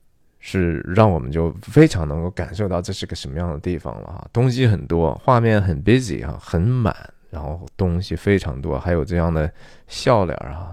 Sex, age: male, 20-39